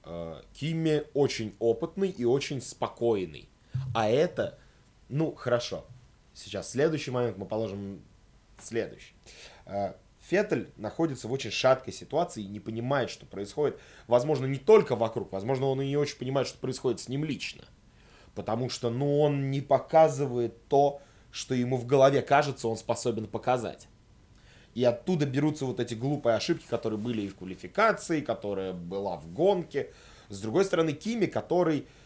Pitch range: 110-155 Hz